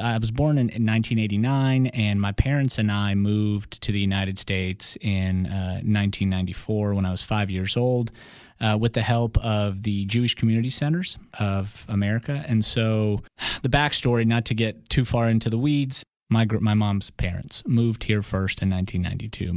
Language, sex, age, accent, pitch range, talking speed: English, male, 30-49, American, 100-120 Hz, 170 wpm